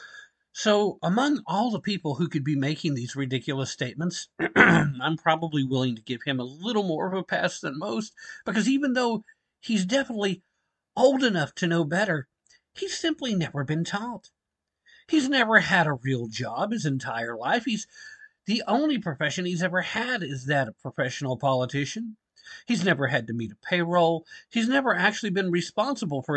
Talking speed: 170 wpm